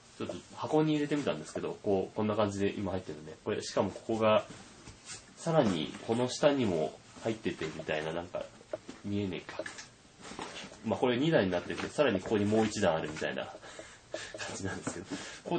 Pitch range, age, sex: 95-135 Hz, 20-39, male